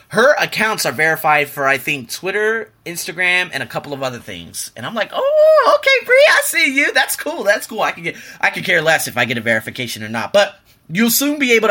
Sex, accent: male, American